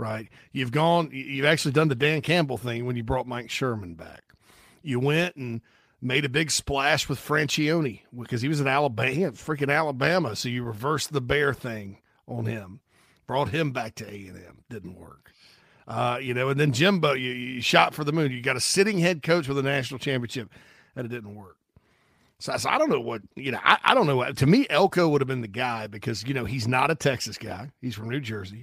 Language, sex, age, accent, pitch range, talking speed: English, male, 40-59, American, 120-155 Hz, 225 wpm